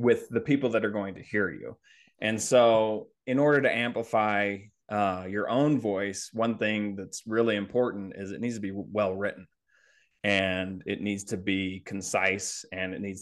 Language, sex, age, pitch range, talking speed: English, male, 20-39, 100-115 Hz, 175 wpm